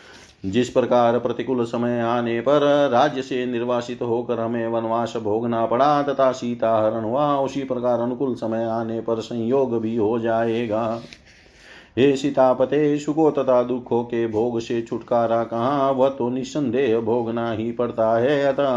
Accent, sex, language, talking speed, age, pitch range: native, male, Hindi, 150 wpm, 40-59, 115-130 Hz